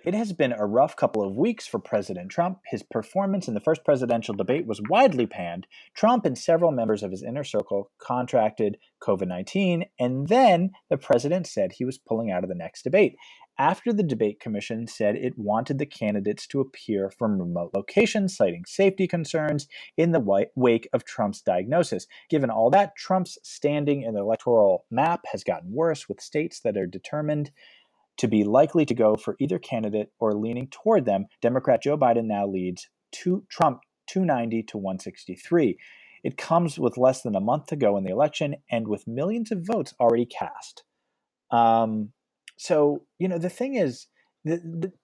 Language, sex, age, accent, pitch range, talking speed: English, male, 30-49, American, 115-185 Hz, 185 wpm